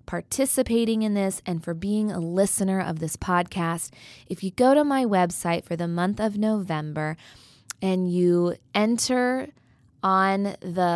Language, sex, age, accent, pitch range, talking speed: English, female, 20-39, American, 165-215 Hz, 150 wpm